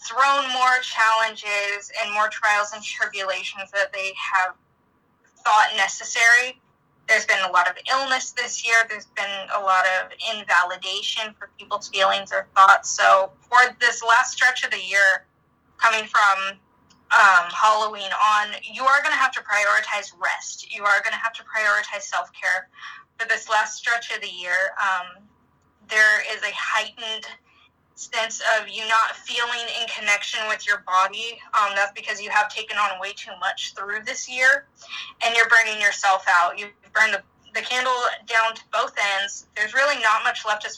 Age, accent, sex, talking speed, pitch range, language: 10-29, American, female, 170 wpm, 200-235 Hz, English